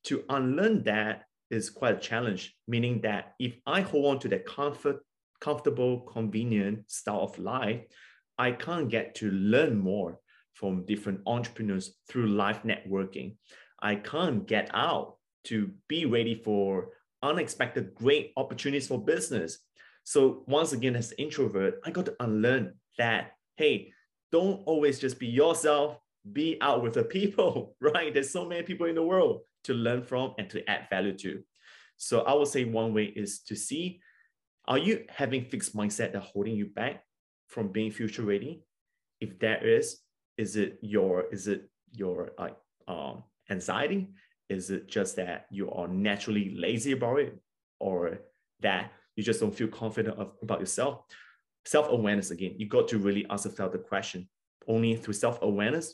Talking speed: 165 wpm